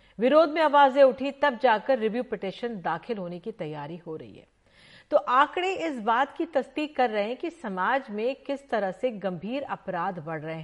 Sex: female